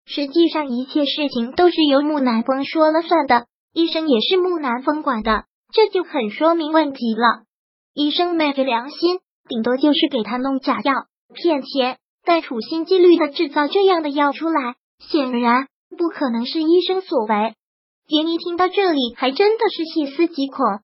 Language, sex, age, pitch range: Chinese, male, 20-39, 270-330 Hz